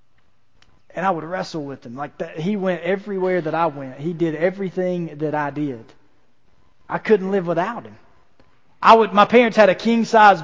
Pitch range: 145-195 Hz